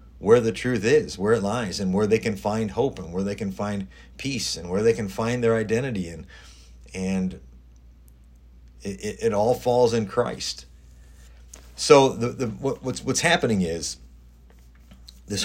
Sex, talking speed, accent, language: male, 165 wpm, American, English